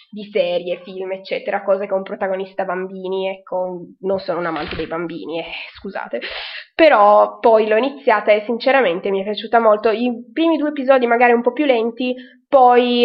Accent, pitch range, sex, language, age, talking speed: native, 195-255 Hz, female, Italian, 20-39, 175 wpm